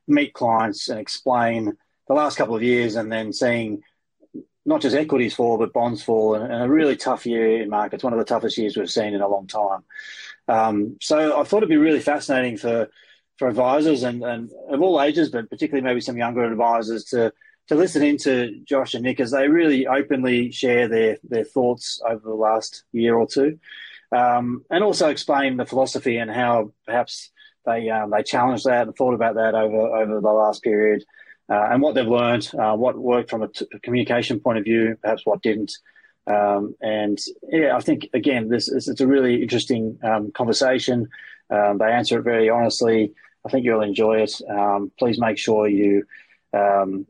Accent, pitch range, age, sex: Australian, 110-130 Hz, 30-49, male